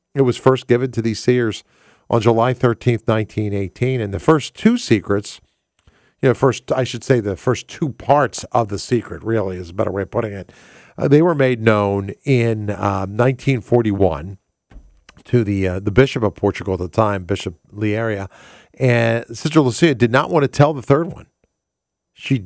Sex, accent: male, American